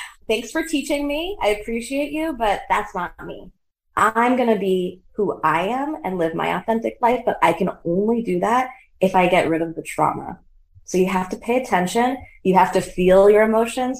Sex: female